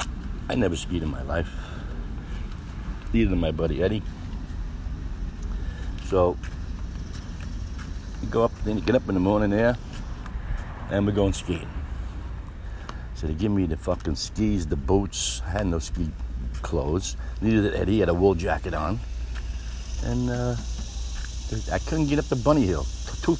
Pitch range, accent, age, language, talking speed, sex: 75-100 Hz, American, 60-79, English, 155 wpm, male